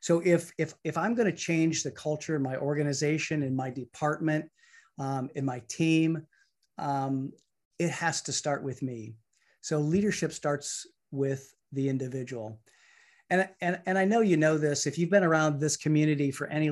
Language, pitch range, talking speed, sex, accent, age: English, 135-165 Hz, 175 wpm, male, American, 40-59